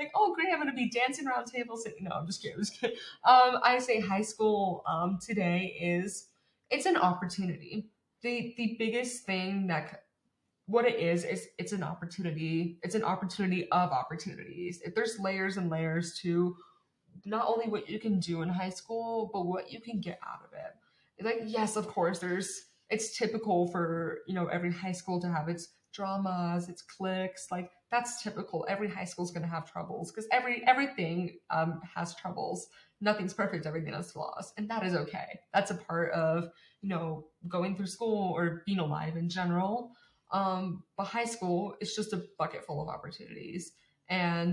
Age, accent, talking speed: 20-39, American, 185 wpm